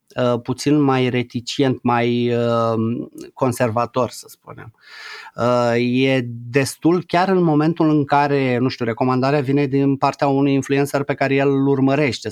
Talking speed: 130 wpm